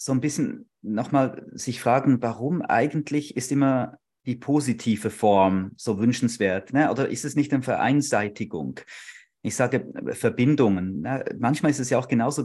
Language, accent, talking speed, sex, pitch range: German, German, 145 wpm, male, 120-150 Hz